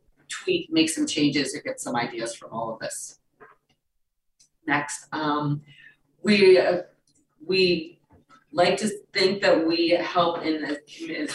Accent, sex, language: American, female, English